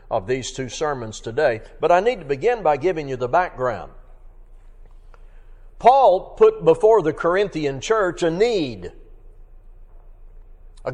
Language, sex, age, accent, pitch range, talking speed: English, male, 60-79, American, 135-205 Hz, 130 wpm